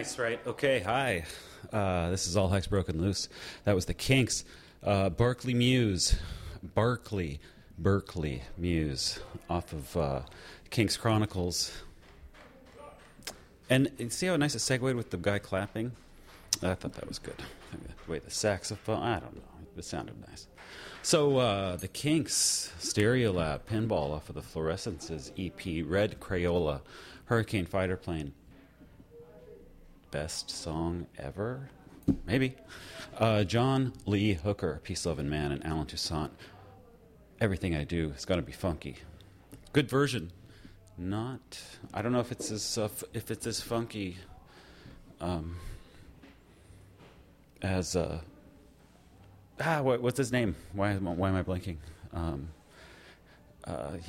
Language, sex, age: English, male, 30-49